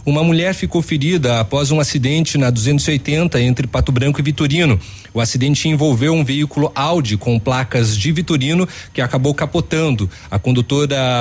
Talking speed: 155 wpm